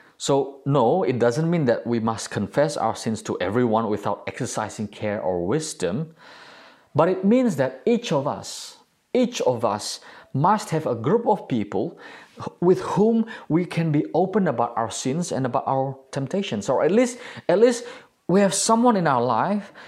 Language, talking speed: English, 175 wpm